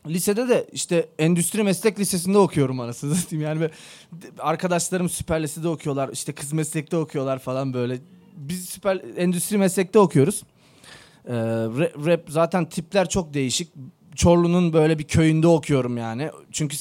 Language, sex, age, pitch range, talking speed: Turkish, male, 30-49, 150-180 Hz, 130 wpm